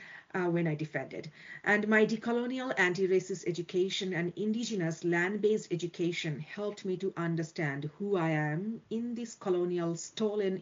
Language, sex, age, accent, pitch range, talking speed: English, female, 40-59, Indian, 165-215 Hz, 135 wpm